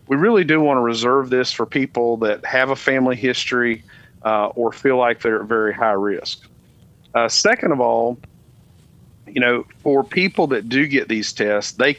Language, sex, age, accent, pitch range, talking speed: English, male, 40-59, American, 115-135 Hz, 185 wpm